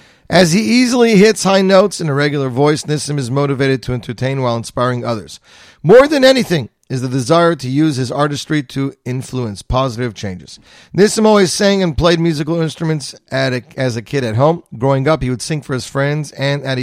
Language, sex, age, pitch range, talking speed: English, male, 40-59, 130-170 Hz, 200 wpm